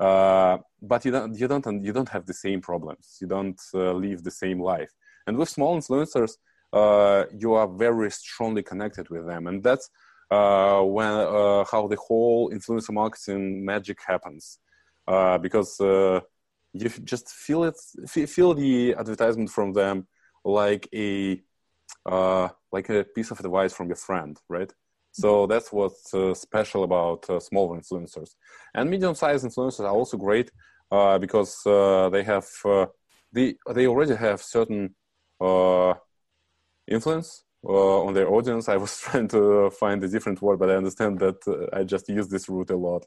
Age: 20-39